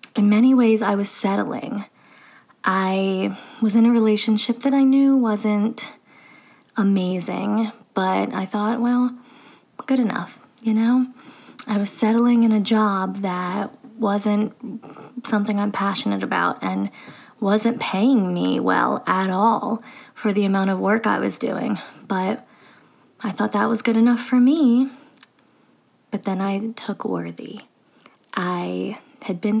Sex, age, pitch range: female, 20-39, 195-240 Hz